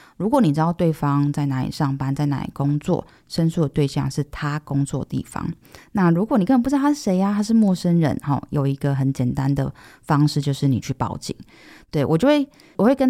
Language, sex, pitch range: Chinese, female, 135-165 Hz